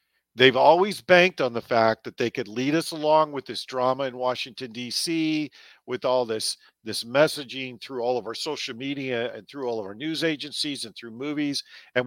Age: 50-69